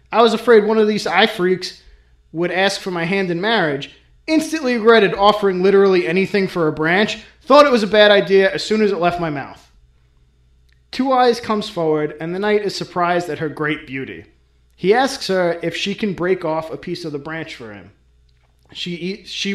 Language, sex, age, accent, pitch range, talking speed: English, male, 30-49, American, 155-205 Hz, 205 wpm